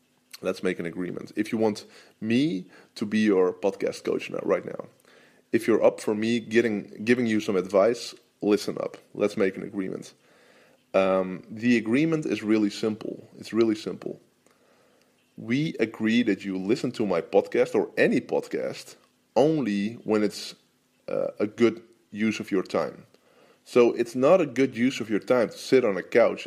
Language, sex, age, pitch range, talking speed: English, male, 20-39, 100-115 Hz, 170 wpm